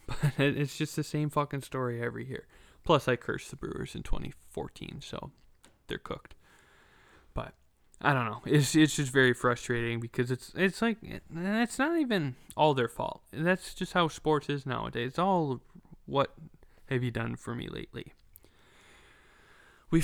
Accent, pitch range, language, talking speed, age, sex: American, 120-150 Hz, English, 160 wpm, 20-39, male